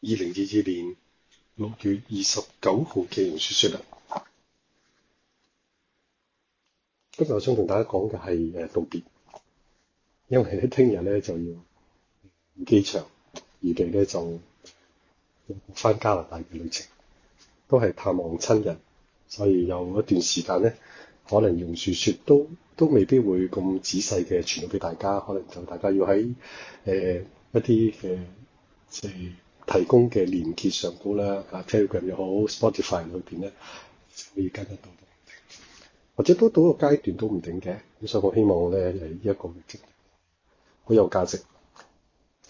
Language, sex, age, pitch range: Chinese, male, 30-49, 90-115 Hz